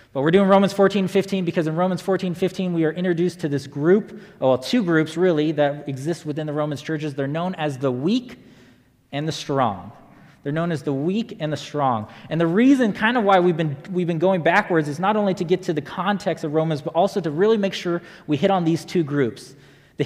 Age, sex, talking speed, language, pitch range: 20-39, male, 235 wpm, English, 130-170 Hz